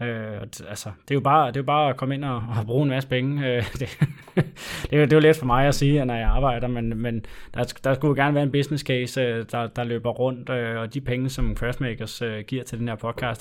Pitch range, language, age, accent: 115-140 Hz, Danish, 20-39, native